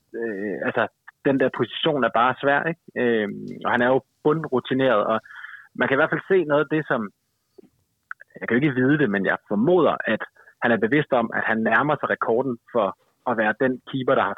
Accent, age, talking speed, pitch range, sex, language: native, 30-49, 215 wpm, 115-140 Hz, male, Danish